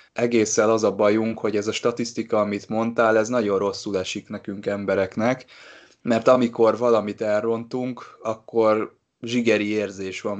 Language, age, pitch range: Hungarian, 20-39, 100-115 Hz